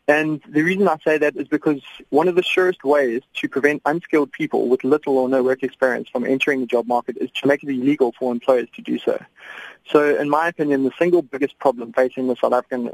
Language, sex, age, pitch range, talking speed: English, male, 20-39, 130-145 Hz, 230 wpm